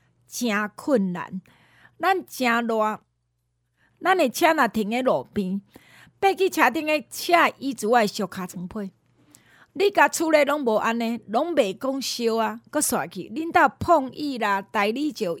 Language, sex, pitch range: Chinese, female, 205-290 Hz